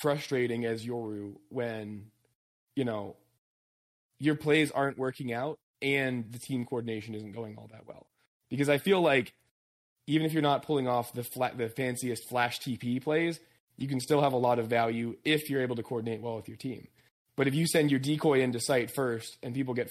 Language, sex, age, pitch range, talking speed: English, male, 20-39, 115-140 Hz, 200 wpm